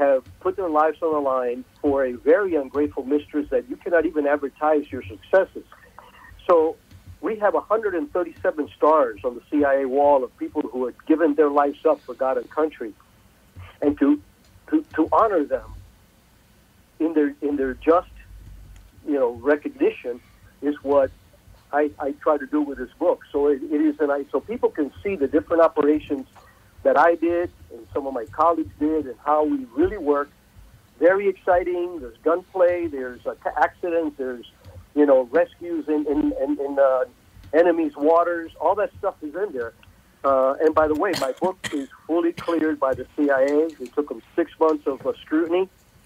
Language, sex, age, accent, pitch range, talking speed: English, male, 60-79, American, 135-165 Hz, 180 wpm